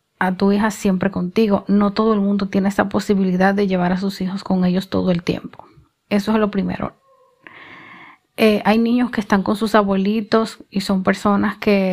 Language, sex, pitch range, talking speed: Spanish, female, 195-240 Hz, 190 wpm